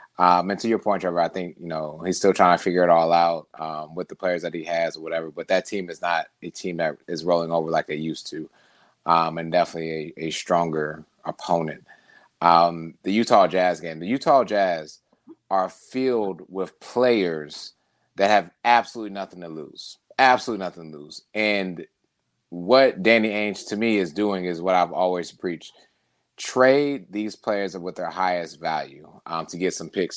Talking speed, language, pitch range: 190 wpm, English, 85-100 Hz